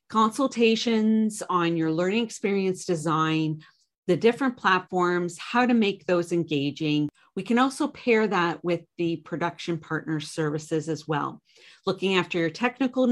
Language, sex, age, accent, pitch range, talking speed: English, female, 40-59, American, 155-195 Hz, 135 wpm